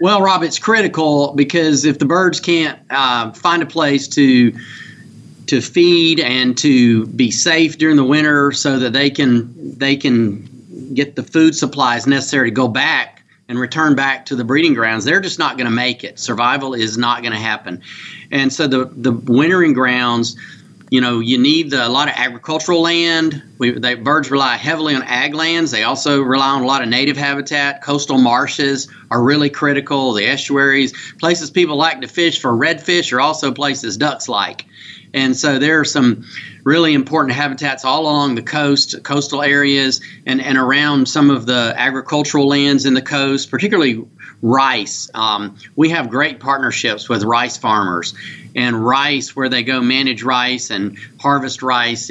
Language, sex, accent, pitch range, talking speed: English, male, American, 120-145 Hz, 175 wpm